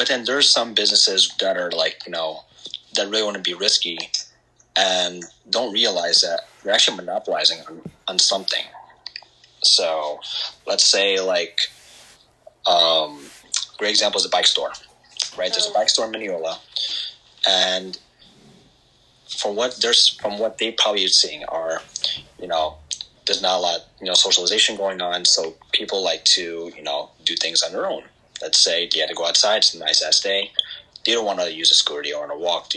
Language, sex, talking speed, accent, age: English, male, 185 wpm, American, 30-49